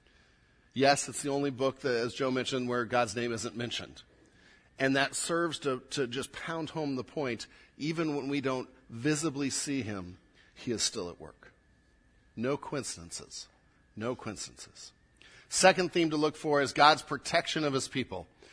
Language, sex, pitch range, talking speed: English, male, 125-170 Hz, 165 wpm